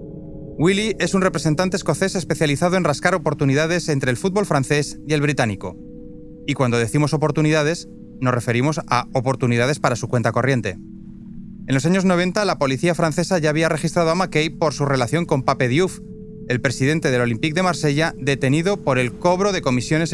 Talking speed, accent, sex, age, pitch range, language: 175 wpm, Spanish, male, 30-49, 125-180 Hz, Spanish